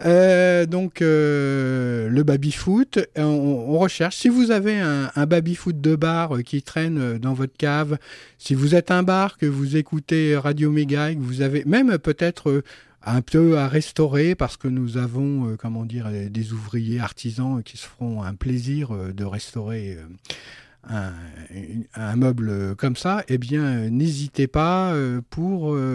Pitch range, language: 130-170 Hz, French